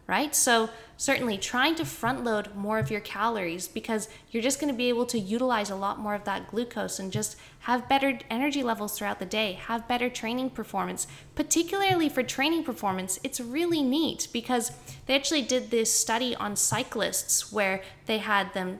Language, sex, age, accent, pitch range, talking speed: English, female, 10-29, American, 190-250 Hz, 185 wpm